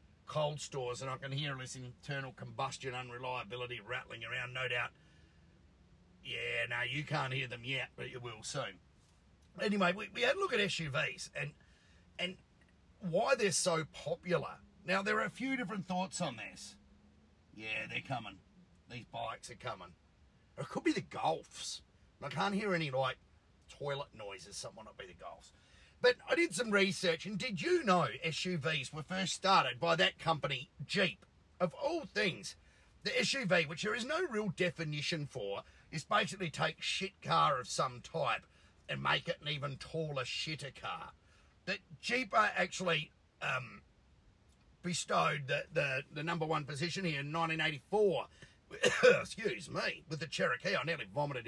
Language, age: English, 40-59